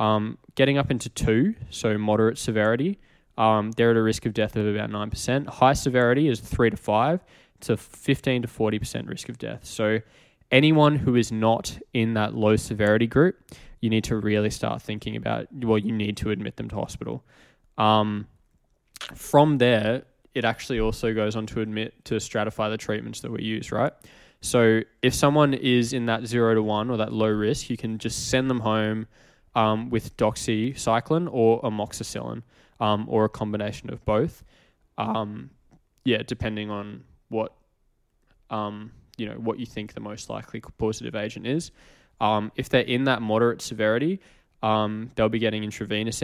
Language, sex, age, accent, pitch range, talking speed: English, male, 10-29, Australian, 110-120 Hz, 175 wpm